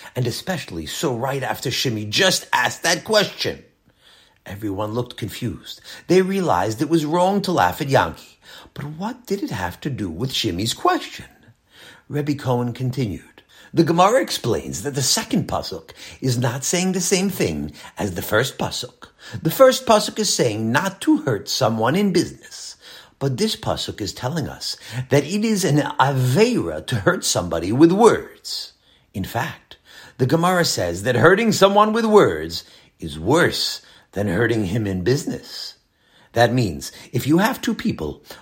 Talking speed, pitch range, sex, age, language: 160 wpm, 120-190 Hz, male, 50-69, English